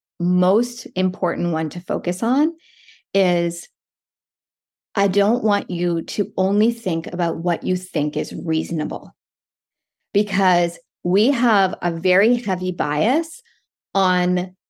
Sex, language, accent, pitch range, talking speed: female, English, American, 175-215 Hz, 115 wpm